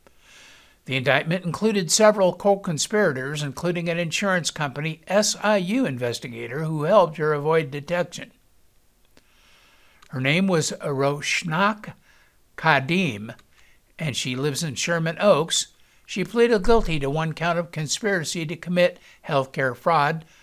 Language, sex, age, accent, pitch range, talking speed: English, male, 60-79, American, 140-185 Hz, 120 wpm